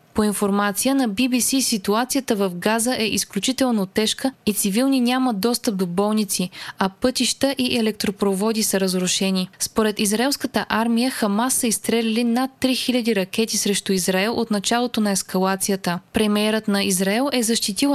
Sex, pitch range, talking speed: female, 200-245 Hz, 140 wpm